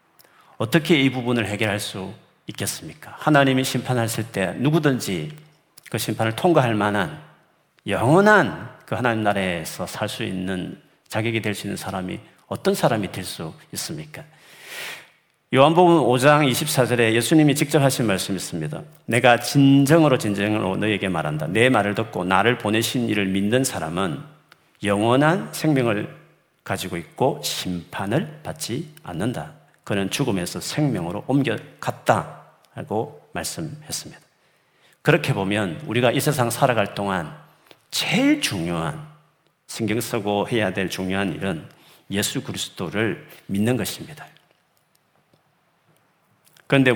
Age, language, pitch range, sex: 40-59, Korean, 100-150 Hz, male